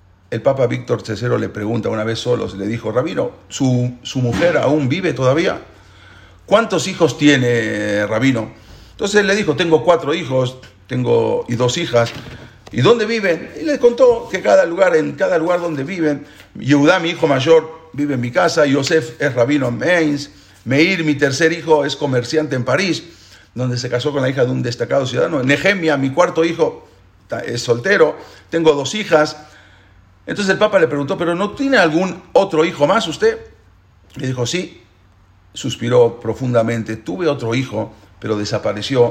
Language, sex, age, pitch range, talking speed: English, male, 50-69, 110-155 Hz, 170 wpm